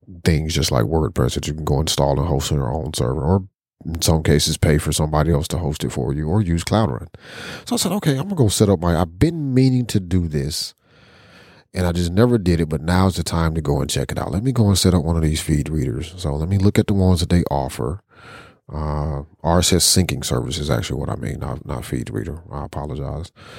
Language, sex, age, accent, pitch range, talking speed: English, male, 40-59, American, 75-100 Hz, 255 wpm